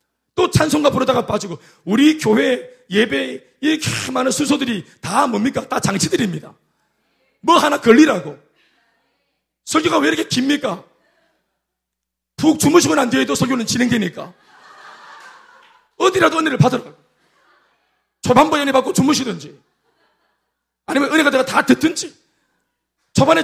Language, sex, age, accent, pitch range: Korean, male, 40-59, native, 190-300 Hz